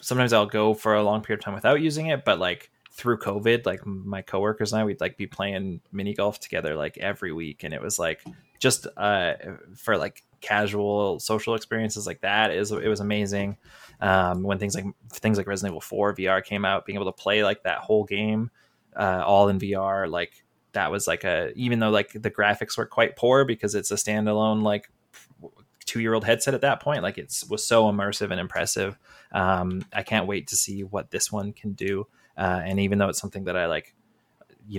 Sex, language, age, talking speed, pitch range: male, English, 20-39, 215 wpm, 100-110 Hz